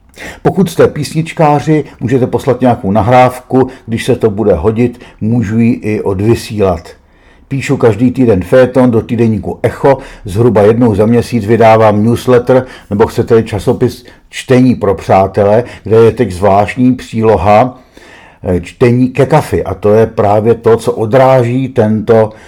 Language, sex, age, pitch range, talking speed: Czech, male, 50-69, 100-130 Hz, 135 wpm